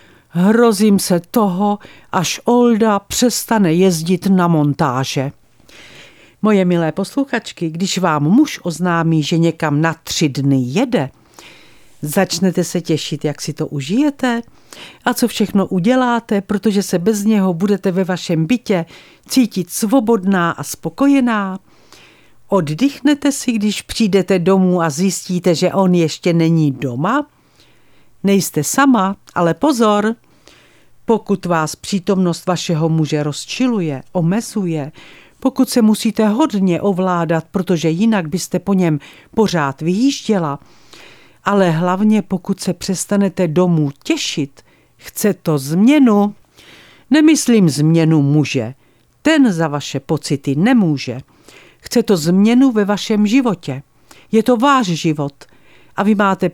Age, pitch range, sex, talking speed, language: 50-69, 165-220 Hz, female, 120 wpm, Czech